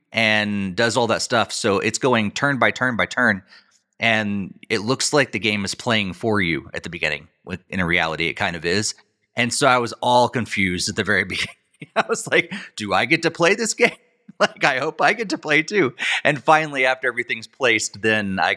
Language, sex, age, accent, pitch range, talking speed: English, male, 30-49, American, 95-130 Hz, 225 wpm